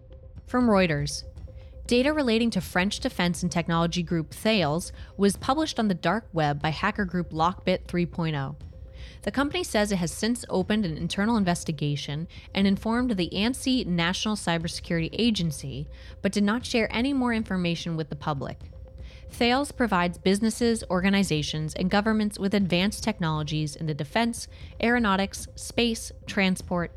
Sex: female